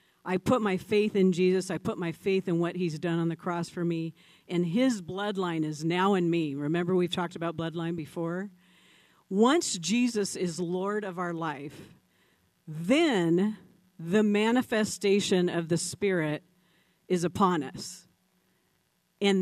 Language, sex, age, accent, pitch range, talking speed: English, female, 50-69, American, 175-215 Hz, 150 wpm